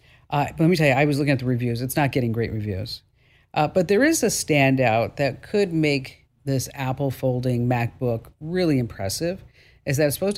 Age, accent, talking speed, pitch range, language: 50-69, American, 210 wpm, 125-165 Hz, English